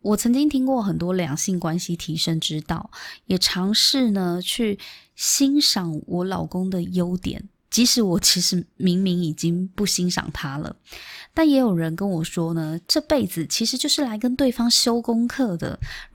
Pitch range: 165-230 Hz